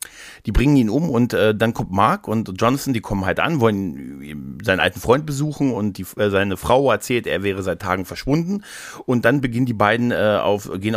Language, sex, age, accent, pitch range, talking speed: German, male, 40-59, German, 100-130 Hz, 215 wpm